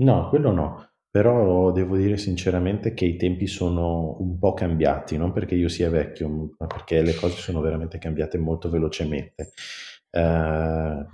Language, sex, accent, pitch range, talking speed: Italian, male, native, 80-95 Hz, 155 wpm